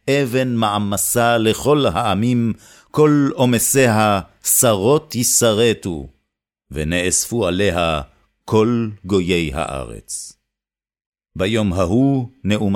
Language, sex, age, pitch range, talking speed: Hebrew, male, 50-69, 95-125 Hz, 75 wpm